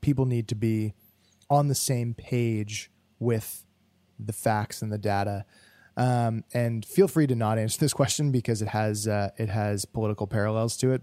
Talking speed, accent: 180 wpm, American